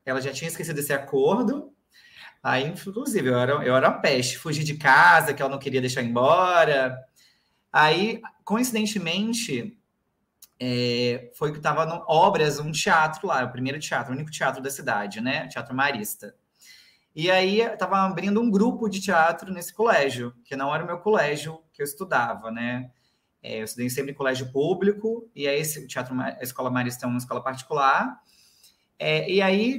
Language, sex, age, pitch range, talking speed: Portuguese, male, 30-49, 135-205 Hz, 170 wpm